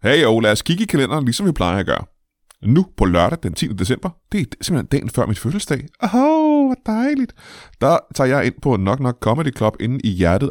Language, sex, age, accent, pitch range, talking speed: Danish, male, 20-39, native, 100-150 Hz, 235 wpm